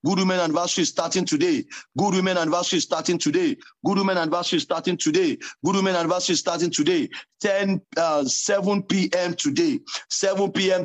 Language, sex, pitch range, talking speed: English, male, 170-260 Hz, 140 wpm